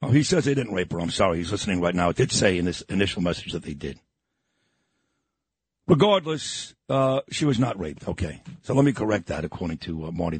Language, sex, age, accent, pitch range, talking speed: English, male, 60-79, American, 95-150 Hz, 225 wpm